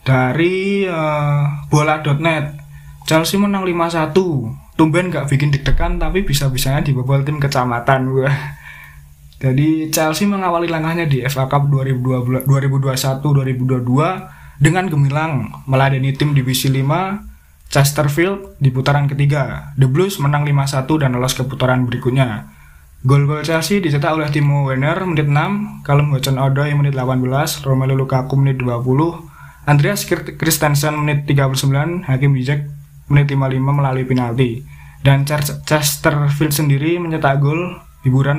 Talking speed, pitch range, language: 115 wpm, 130-155 Hz, Indonesian